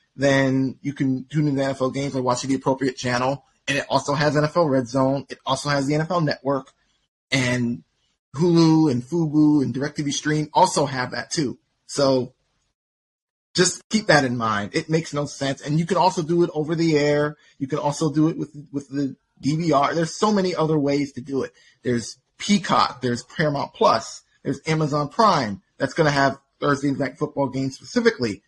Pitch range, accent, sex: 135-160 Hz, American, male